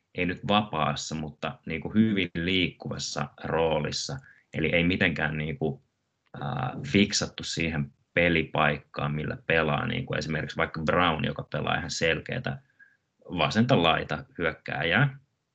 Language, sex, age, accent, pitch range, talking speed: Finnish, male, 20-39, native, 75-85 Hz, 95 wpm